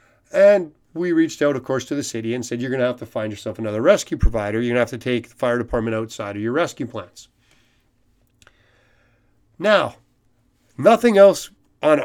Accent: American